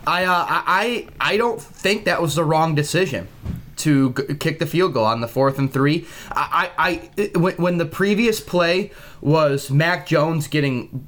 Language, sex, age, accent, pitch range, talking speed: English, male, 20-39, American, 135-165 Hz, 190 wpm